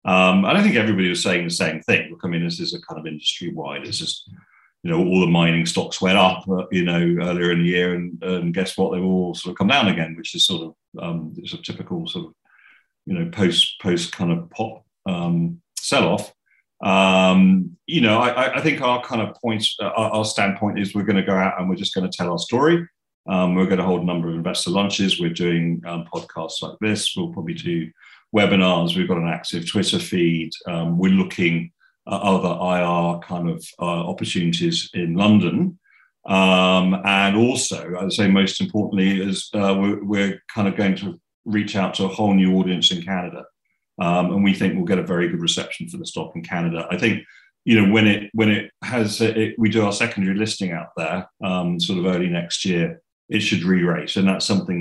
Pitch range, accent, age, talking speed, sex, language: 85-110 Hz, British, 40-59, 220 wpm, male, English